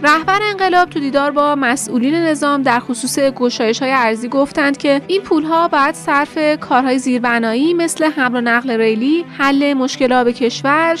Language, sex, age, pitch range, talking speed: Persian, female, 30-49, 240-310 Hz, 160 wpm